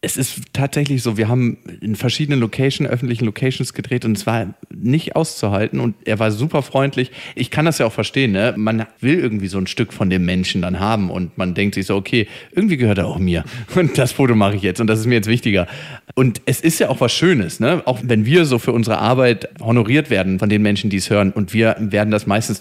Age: 40-59